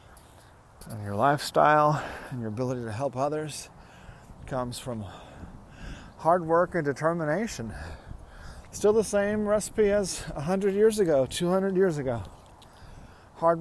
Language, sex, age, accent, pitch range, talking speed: English, male, 40-59, American, 115-170 Hz, 120 wpm